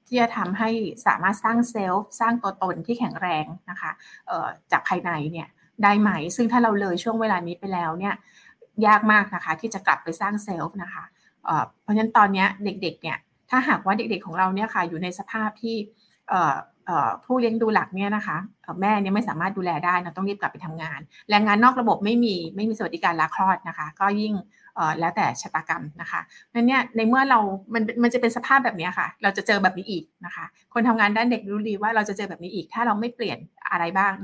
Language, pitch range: Thai, 180-225 Hz